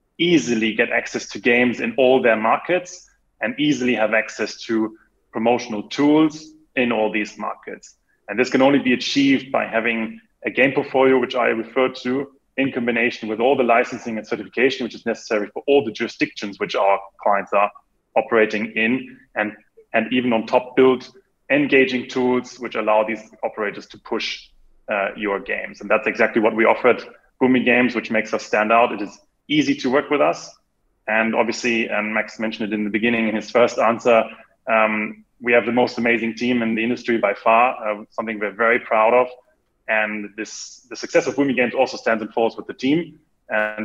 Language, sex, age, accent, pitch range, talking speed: English, male, 20-39, German, 110-125 Hz, 190 wpm